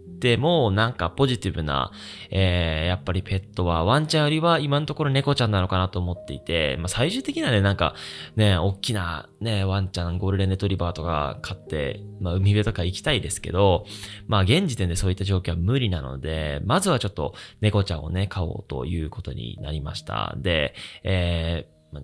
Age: 20-39